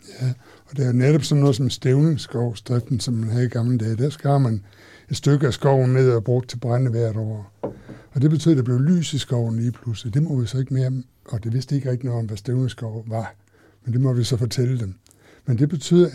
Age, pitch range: 60-79, 115-140 Hz